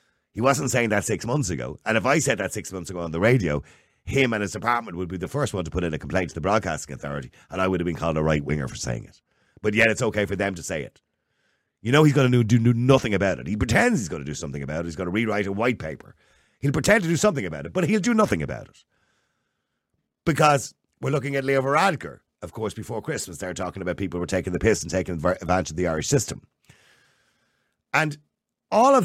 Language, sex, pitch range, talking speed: English, male, 95-140 Hz, 255 wpm